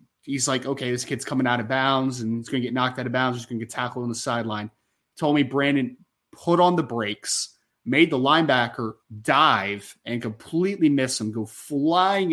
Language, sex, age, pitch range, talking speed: English, male, 20-39, 125-160 Hz, 210 wpm